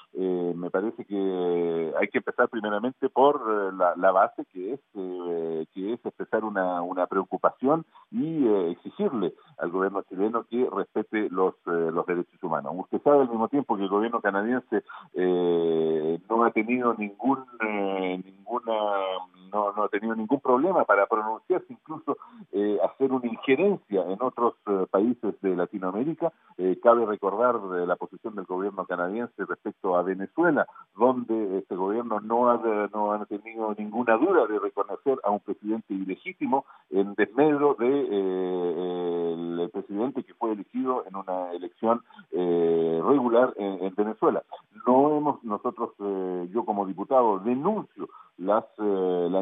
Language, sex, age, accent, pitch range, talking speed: Spanish, male, 50-69, Argentinian, 95-125 Hz, 150 wpm